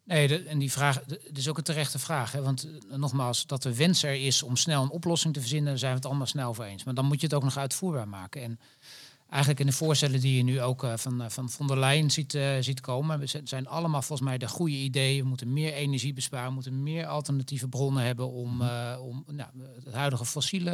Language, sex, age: Dutch, male, 40-59